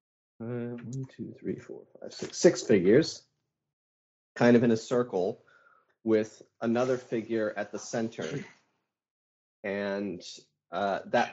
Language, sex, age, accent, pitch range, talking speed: English, male, 30-49, American, 105-125 Hz, 115 wpm